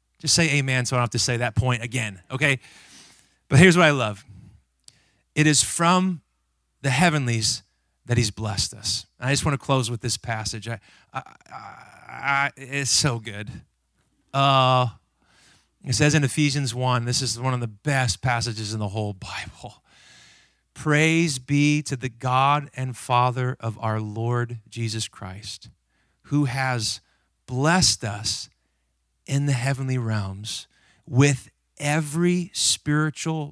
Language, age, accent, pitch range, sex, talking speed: English, 30-49, American, 110-145 Hz, male, 140 wpm